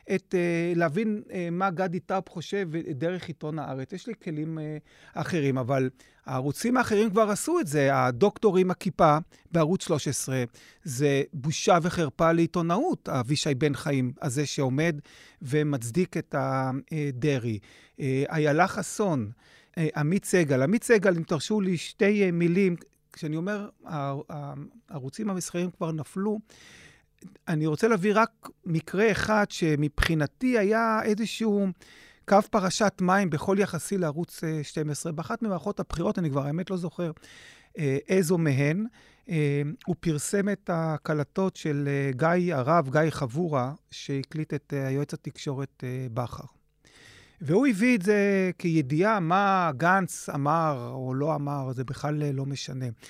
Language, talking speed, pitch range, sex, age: Hebrew, 125 wpm, 145-190 Hz, male, 40-59